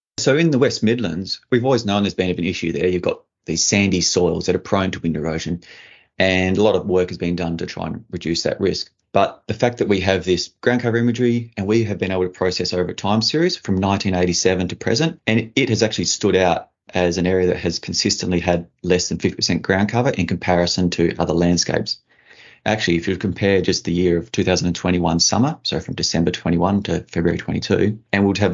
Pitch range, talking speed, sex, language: 90-110 Hz, 220 wpm, male, English